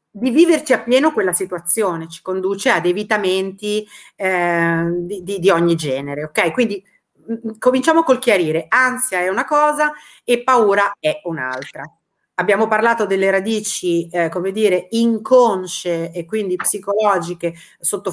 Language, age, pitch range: Italian, 30-49, 185-255 Hz